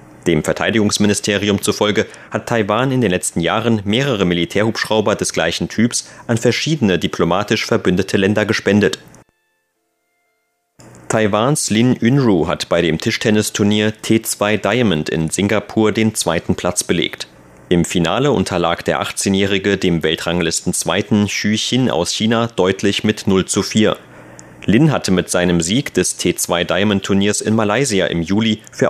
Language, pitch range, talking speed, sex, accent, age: German, 85-110 Hz, 135 wpm, male, German, 30-49